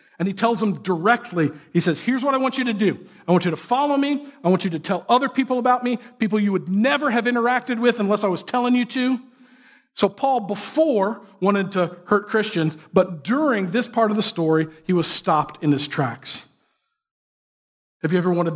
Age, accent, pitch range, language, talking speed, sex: 50-69, American, 150-210 Hz, English, 215 wpm, male